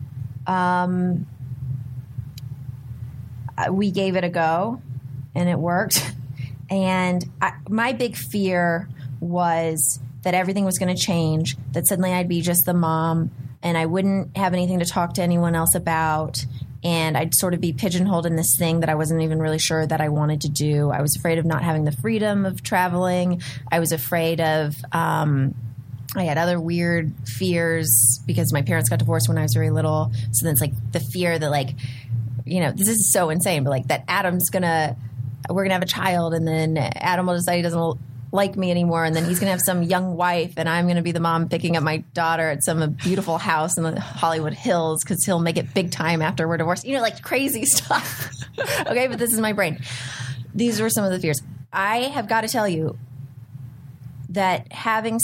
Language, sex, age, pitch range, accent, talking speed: English, female, 20-39, 135-180 Hz, American, 205 wpm